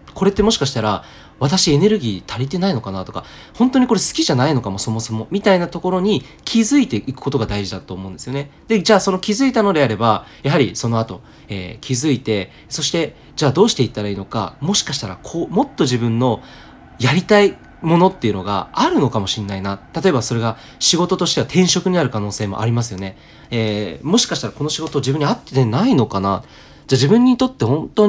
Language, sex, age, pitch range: Japanese, male, 20-39, 110-170 Hz